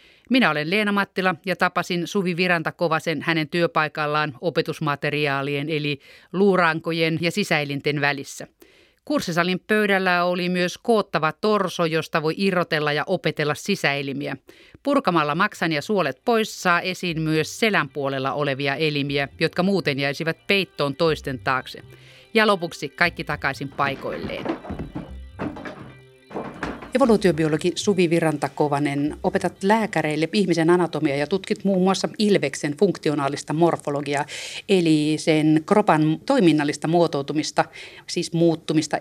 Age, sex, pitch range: 30-49, female, 150-180 Hz